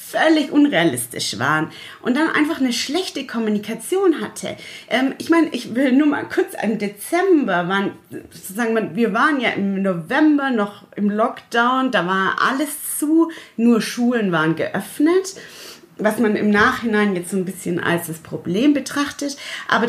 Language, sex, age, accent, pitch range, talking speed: German, female, 30-49, German, 190-265 Hz, 155 wpm